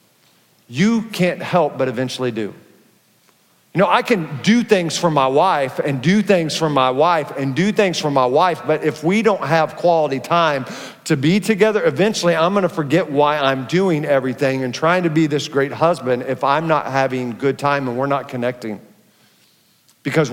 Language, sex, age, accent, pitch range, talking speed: English, male, 40-59, American, 140-190 Hz, 190 wpm